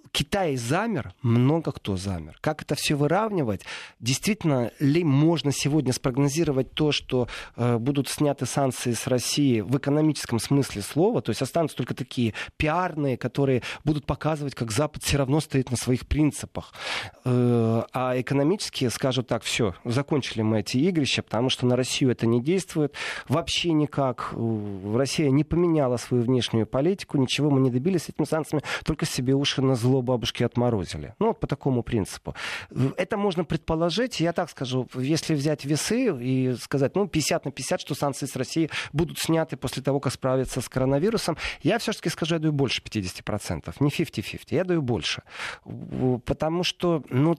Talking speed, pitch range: 160 wpm, 125-155 Hz